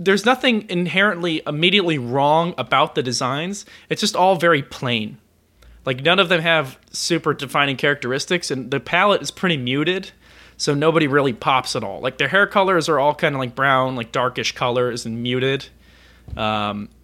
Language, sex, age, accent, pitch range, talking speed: English, male, 20-39, American, 125-165 Hz, 175 wpm